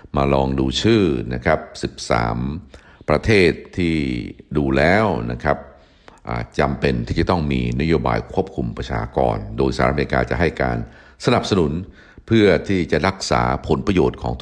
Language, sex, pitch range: Thai, male, 65-80 Hz